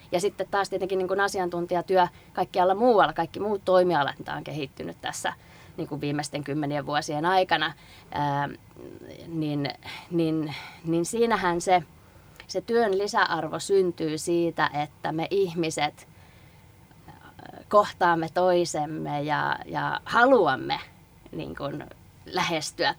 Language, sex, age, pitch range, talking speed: Finnish, female, 20-39, 145-185 Hz, 110 wpm